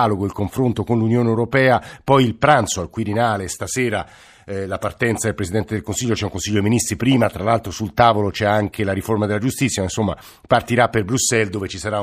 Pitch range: 100-125 Hz